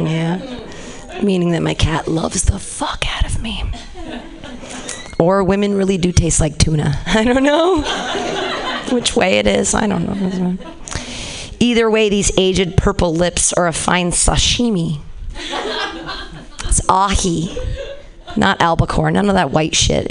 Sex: female